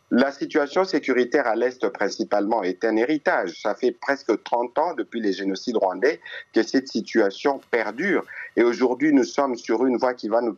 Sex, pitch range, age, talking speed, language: male, 110-155 Hz, 50-69, 180 wpm, French